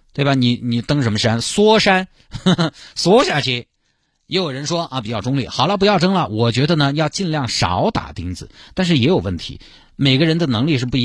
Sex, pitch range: male, 100-155 Hz